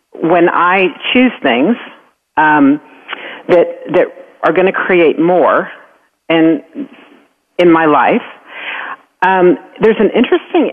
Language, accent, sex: English, American, female